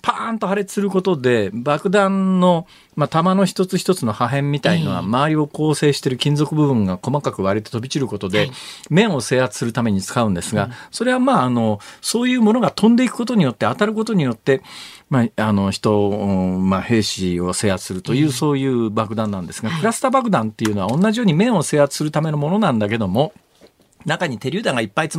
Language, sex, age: Japanese, male, 50-69